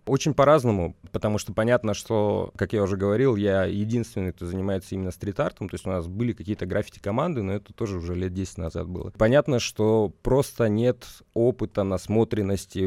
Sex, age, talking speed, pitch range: male, 30-49, 175 wpm, 95-115 Hz